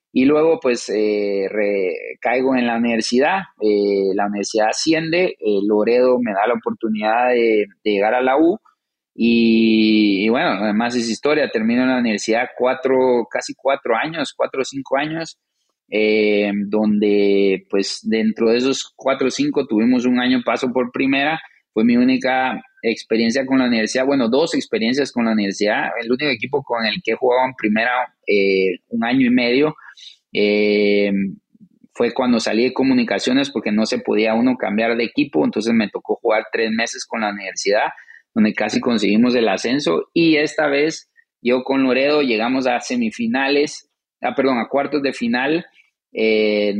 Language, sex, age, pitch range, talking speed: English, male, 30-49, 110-135 Hz, 165 wpm